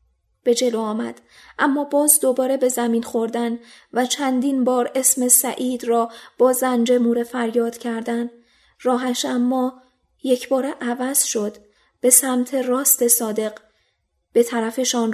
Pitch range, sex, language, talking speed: 230-255 Hz, female, Persian, 125 wpm